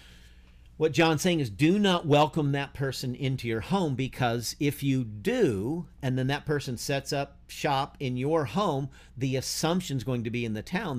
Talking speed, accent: 190 wpm, American